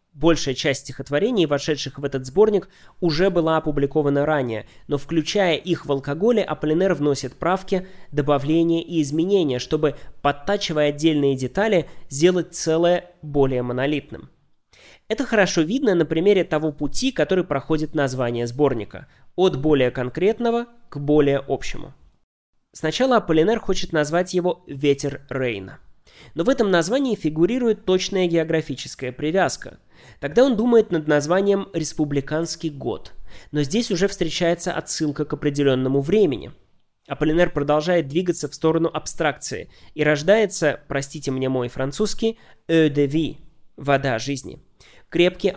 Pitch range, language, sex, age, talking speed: 140-180 Hz, Russian, male, 20-39, 125 wpm